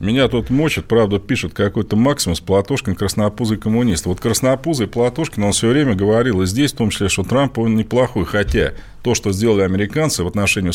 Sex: male